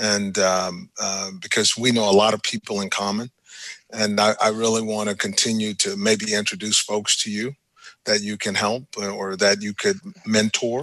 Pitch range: 100-115 Hz